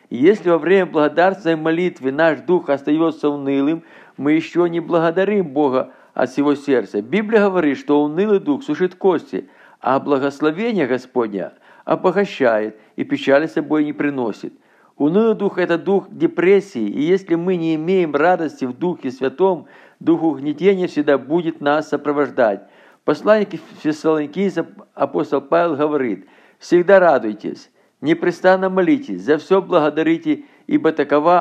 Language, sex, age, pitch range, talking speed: Russian, male, 50-69, 145-185 Hz, 130 wpm